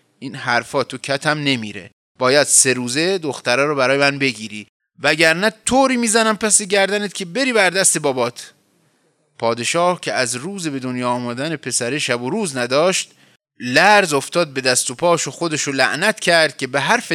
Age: 30-49